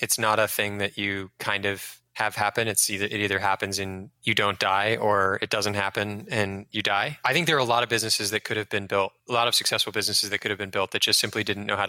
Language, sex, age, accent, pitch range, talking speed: English, male, 20-39, American, 100-120 Hz, 280 wpm